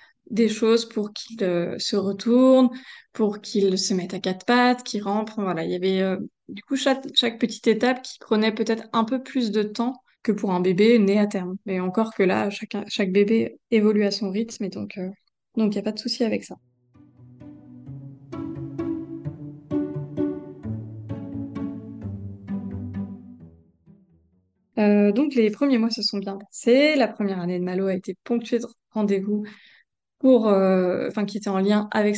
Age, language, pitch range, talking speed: 20-39, French, 190-230 Hz, 170 wpm